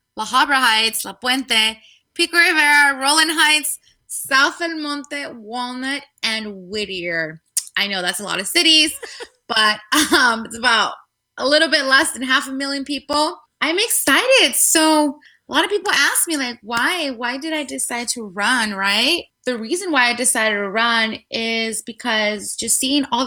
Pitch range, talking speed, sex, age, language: 220-285 Hz, 170 wpm, female, 20-39, English